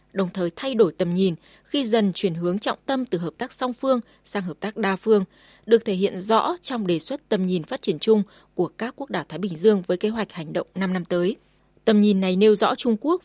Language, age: Vietnamese, 20-39